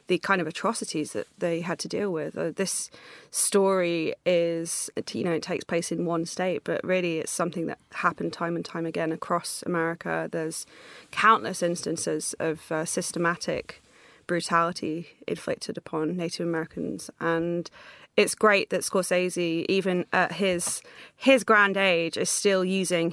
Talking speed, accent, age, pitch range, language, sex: 155 wpm, British, 20-39, 165-185 Hz, English, female